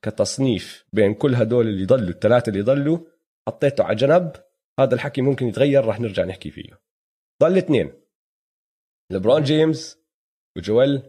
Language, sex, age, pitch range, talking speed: Arabic, male, 30-49, 115-160 Hz, 135 wpm